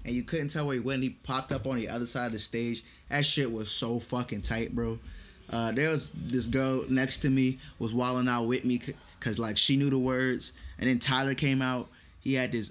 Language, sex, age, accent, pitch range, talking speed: English, male, 20-39, American, 105-130 Hz, 245 wpm